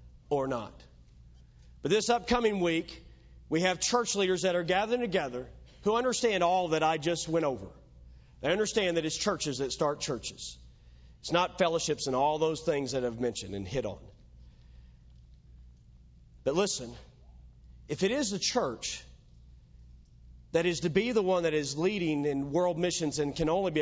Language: English